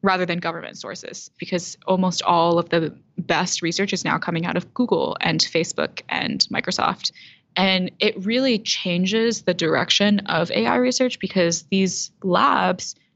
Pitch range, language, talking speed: 170-200 Hz, English, 150 wpm